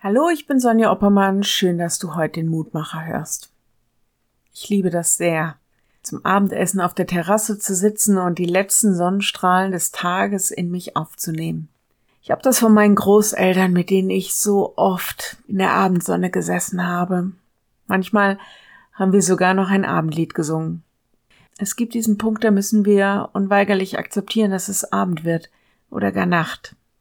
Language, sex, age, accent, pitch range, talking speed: German, female, 50-69, German, 175-210 Hz, 160 wpm